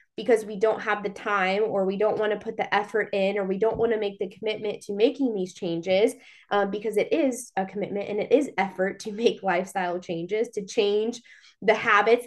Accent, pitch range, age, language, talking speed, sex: American, 195-230 Hz, 20-39, English, 220 wpm, female